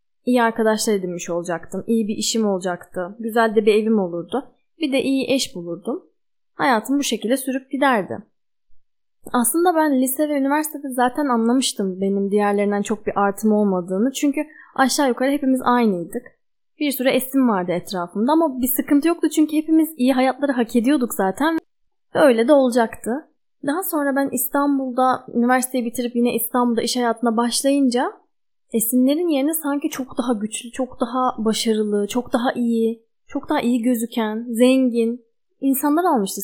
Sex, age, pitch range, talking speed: female, 10-29, 220-275 Hz, 150 wpm